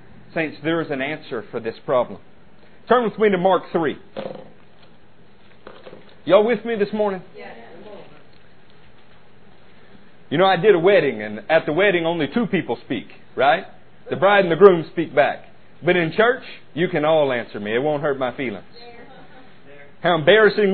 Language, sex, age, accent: English, male, 40-59, American